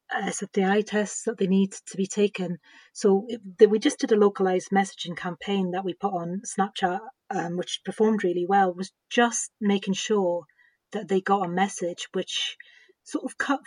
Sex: female